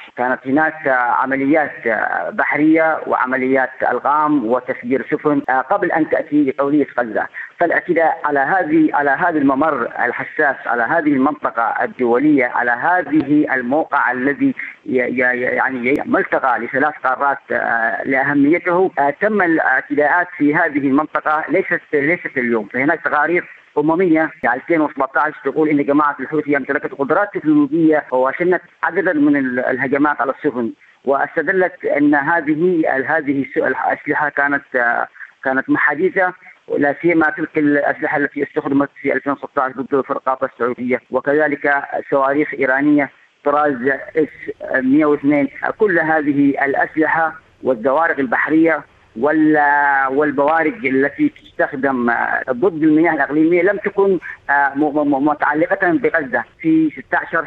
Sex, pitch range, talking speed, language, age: female, 140-165 Hz, 105 wpm, Arabic, 40-59